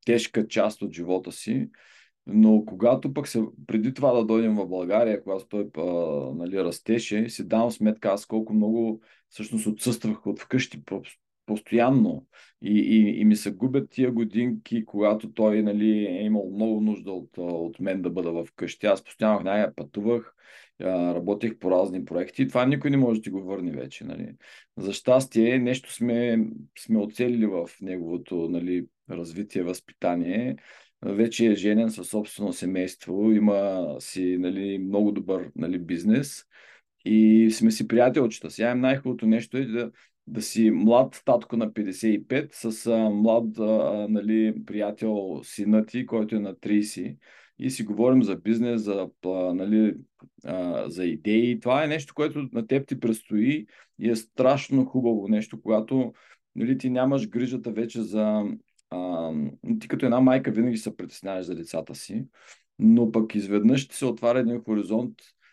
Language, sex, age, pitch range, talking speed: Bulgarian, male, 40-59, 100-120 Hz, 155 wpm